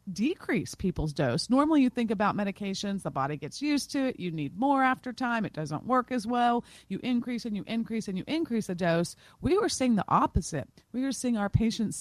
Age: 40-59